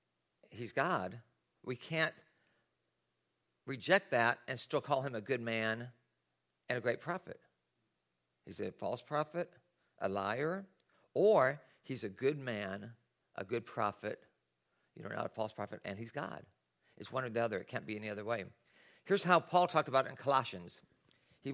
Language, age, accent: English, 50-69, American